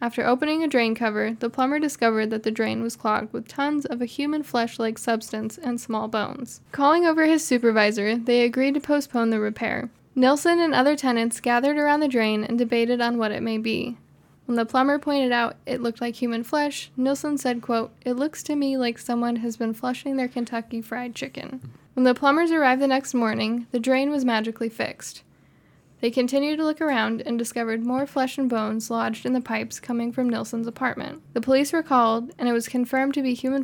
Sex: female